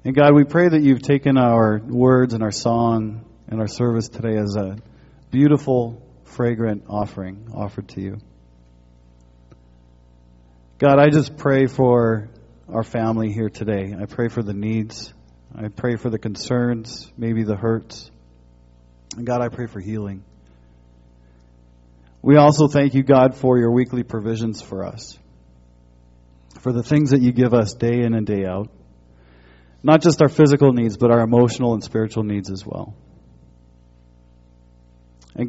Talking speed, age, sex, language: 150 wpm, 40-59, male, English